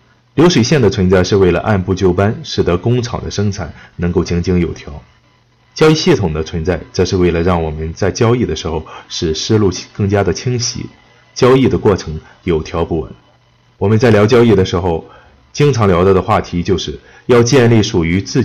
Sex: male